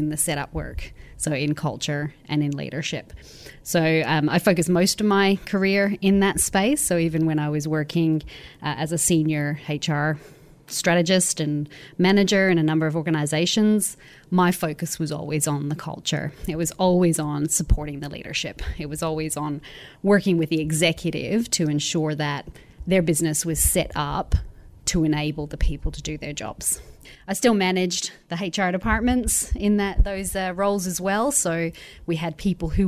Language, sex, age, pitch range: English, female, 30-49, 150-185 Hz